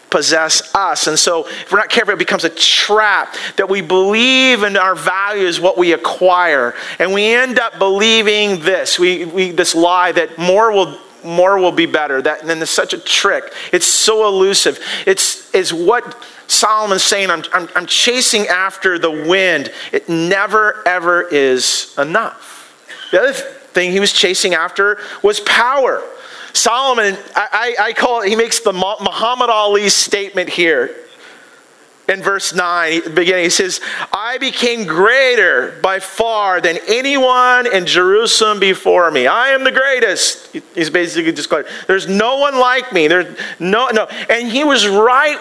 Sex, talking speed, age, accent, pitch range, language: male, 160 wpm, 40-59, American, 185-260 Hz, English